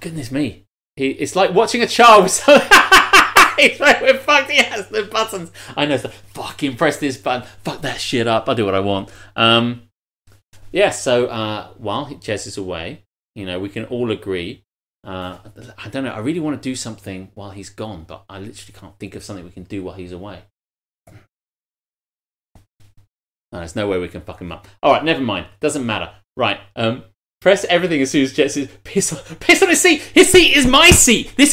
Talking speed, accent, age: 200 wpm, British, 30-49